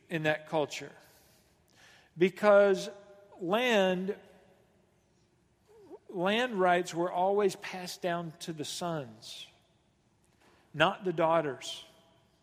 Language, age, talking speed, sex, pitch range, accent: English, 50-69, 80 wpm, male, 170-210 Hz, American